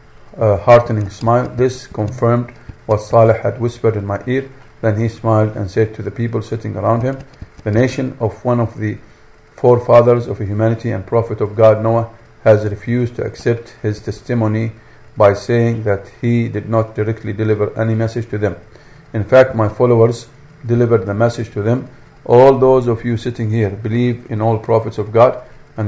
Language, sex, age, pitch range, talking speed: English, male, 50-69, 110-120 Hz, 180 wpm